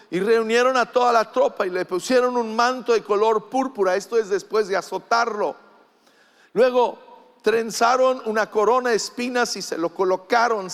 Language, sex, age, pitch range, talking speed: English, male, 50-69, 190-250 Hz, 160 wpm